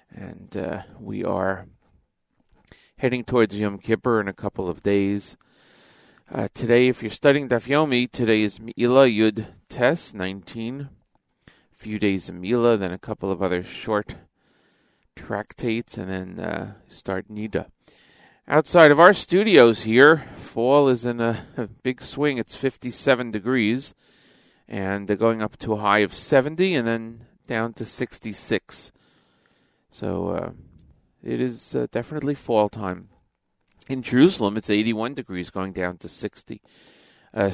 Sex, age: male, 40-59